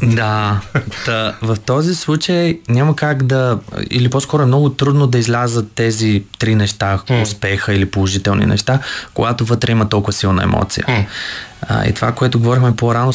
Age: 20-39